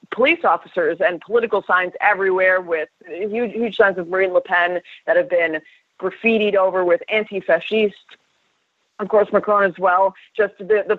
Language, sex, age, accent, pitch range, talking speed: English, female, 30-49, American, 175-250 Hz, 160 wpm